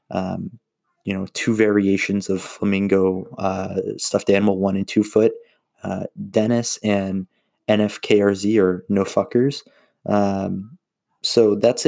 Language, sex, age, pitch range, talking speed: English, male, 20-39, 100-110 Hz, 120 wpm